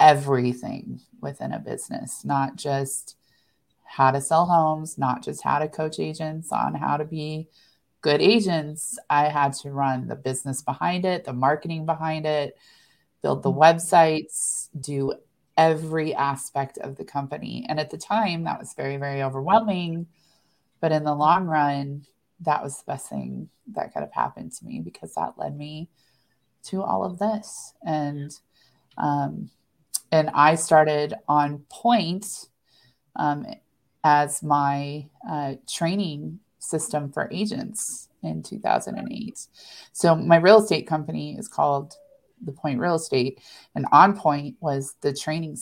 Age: 30-49